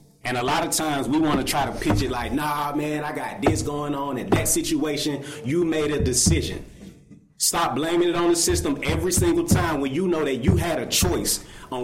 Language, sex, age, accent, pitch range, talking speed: English, male, 30-49, American, 125-155 Hz, 230 wpm